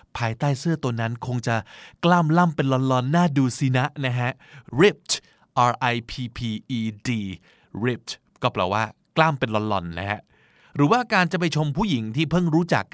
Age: 20-39